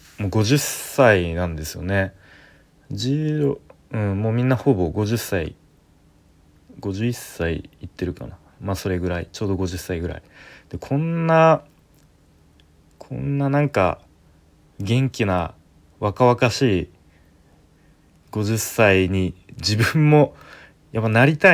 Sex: male